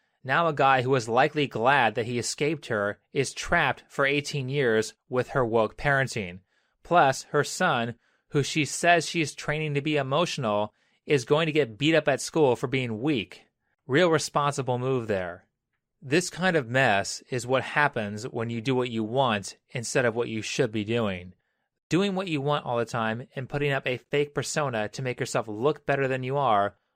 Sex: male